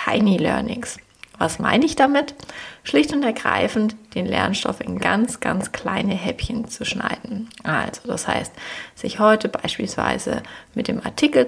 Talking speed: 140 wpm